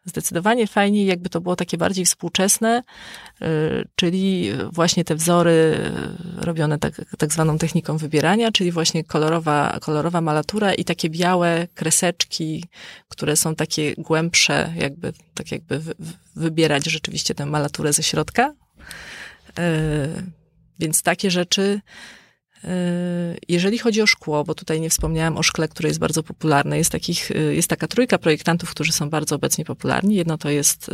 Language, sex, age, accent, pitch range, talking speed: Polish, female, 30-49, native, 160-190 Hz, 135 wpm